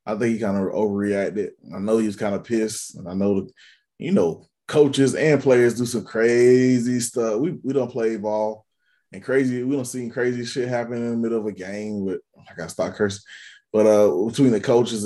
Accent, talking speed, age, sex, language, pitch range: American, 220 wpm, 20-39, male, English, 105-120 Hz